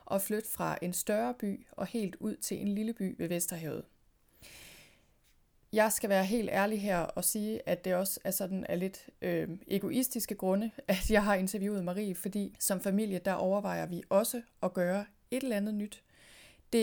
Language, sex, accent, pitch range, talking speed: Danish, female, native, 180-215 Hz, 180 wpm